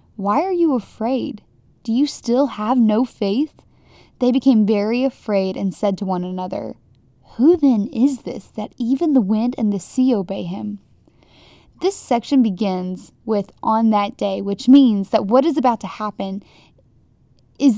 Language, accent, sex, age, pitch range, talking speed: English, American, female, 10-29, 205-255 Hz, 160 wpm